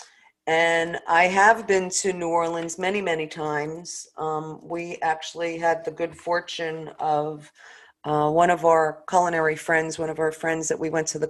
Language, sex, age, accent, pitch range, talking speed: English, female, 40-59, American, 160-185 Hz, 175 wpm